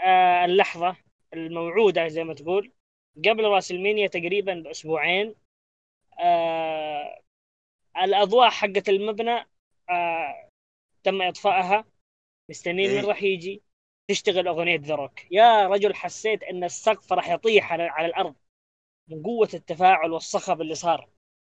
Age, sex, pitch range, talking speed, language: 20-39, female, 170-225 Hz, 115 wpm, Arabic